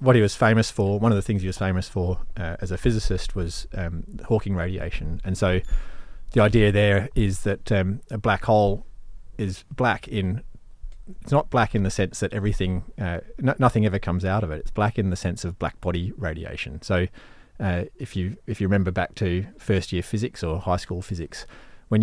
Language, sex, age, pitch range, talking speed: English, male, 30-49, 85-105 Hz, 210 wpm